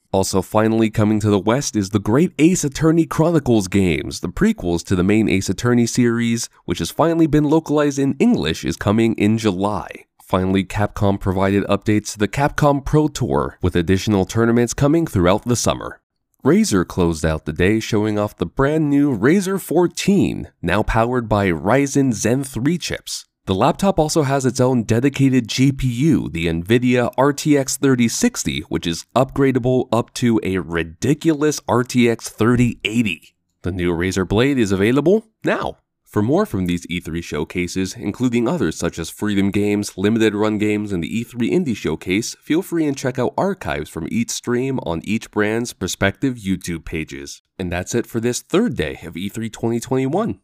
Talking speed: 165 wpm